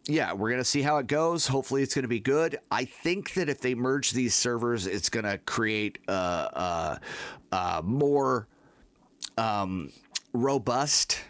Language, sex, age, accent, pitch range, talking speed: English, male, 40-59, American, 100-135 Hz, 155 wpm